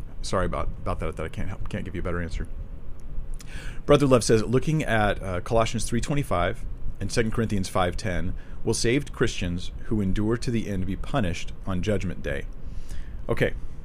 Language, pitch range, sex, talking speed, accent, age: English, 90-110 Hz, male, 175 wpm, American, 40-59